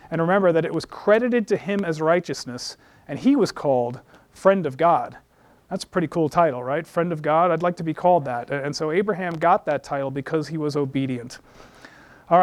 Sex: male